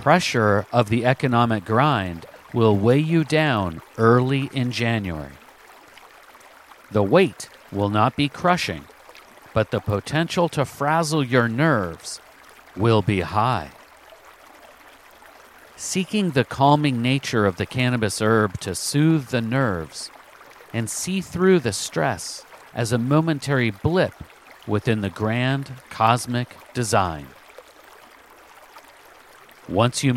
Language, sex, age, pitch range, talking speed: English, male, 50-69, 110-140 Hz, 110 wpm